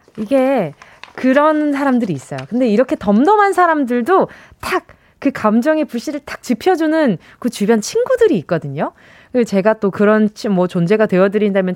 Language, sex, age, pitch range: Korean, female, 20-39, 205-315 Hz